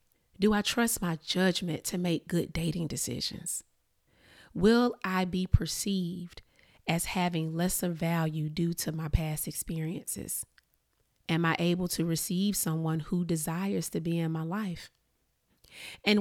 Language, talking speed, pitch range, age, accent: English, 135 wpm, 165-195 Hz, 30-49, American